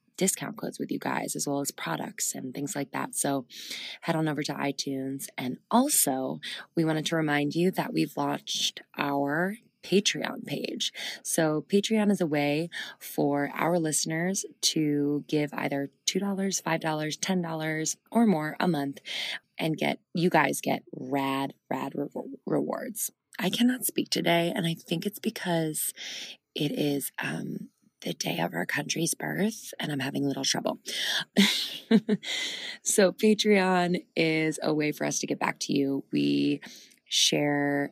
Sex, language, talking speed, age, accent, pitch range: female, English, 150 wpm, 20-39, American, 140-180 Hz